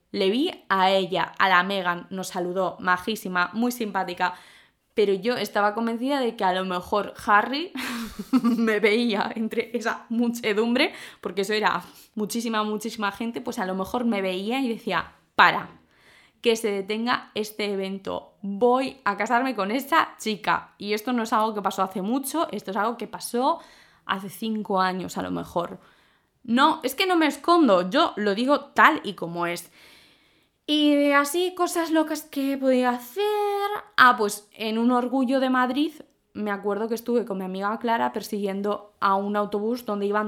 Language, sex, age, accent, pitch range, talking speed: Spanish, female, 20-39, Spanish, 195-265 Hz, 170 wpm